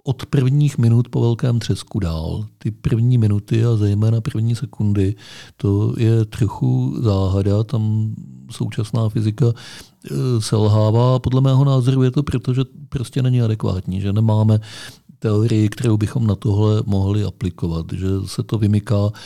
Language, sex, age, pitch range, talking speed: Czech, male, 50-69, 100-120 Hz, 140 wpm